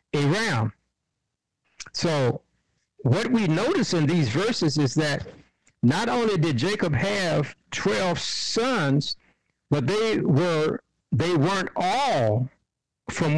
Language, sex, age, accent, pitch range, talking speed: English, male, 60-79, American, 135-175 Hz, 110 wpm